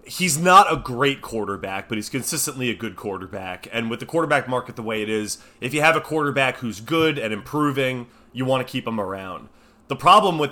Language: English